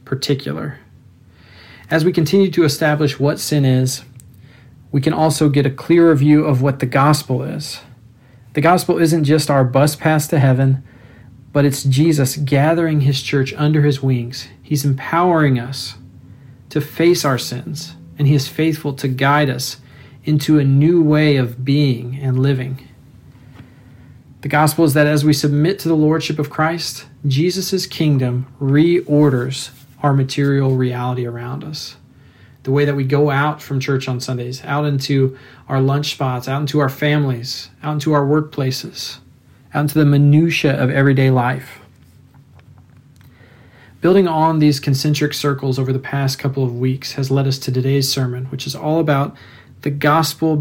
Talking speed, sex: 160 wpm, male